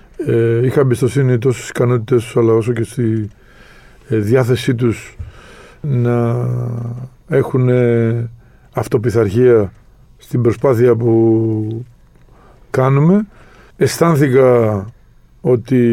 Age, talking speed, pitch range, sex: 50-69, 75 wpm, 120-135 Hz, male